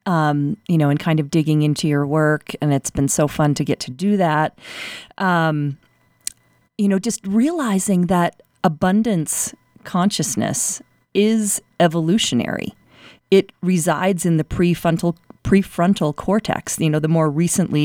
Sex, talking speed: female, 140 wpm